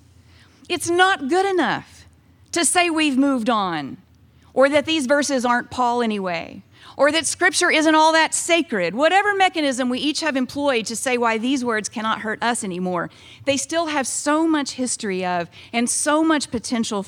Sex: female